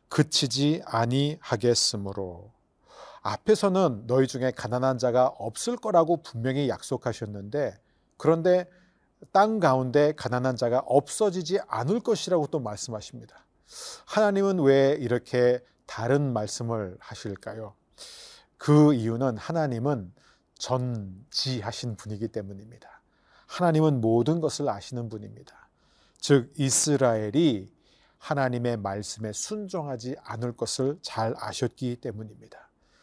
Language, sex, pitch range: Korean, male, 120-160 Hz